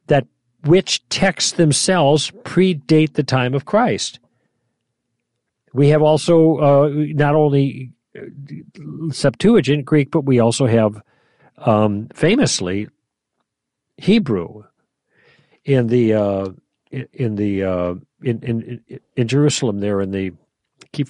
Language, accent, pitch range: English, American, 120-155 Hz